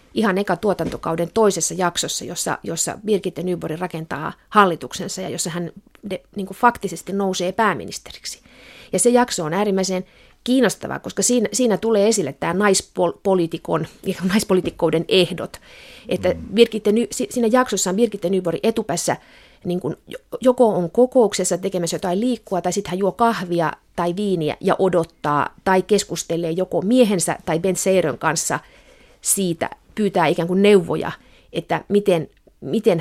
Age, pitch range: 30-49, 175-215 Hz